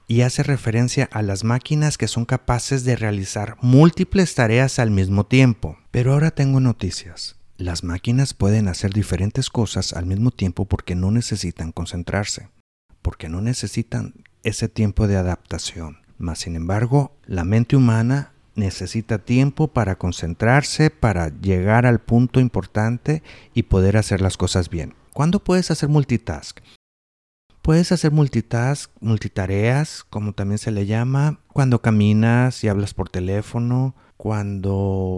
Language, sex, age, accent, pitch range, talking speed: Spanish, male, 50-69, Mexican, 95-125 Hz, 135 wpm